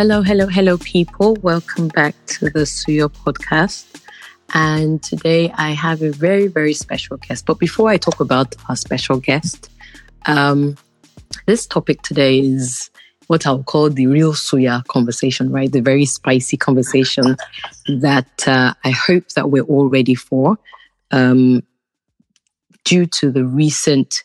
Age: 20-39